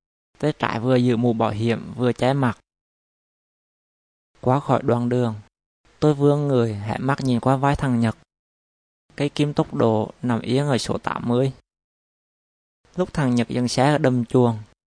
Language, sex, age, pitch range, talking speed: Vietnamese, male, 20-39, 115-135 Hz, 160 wpm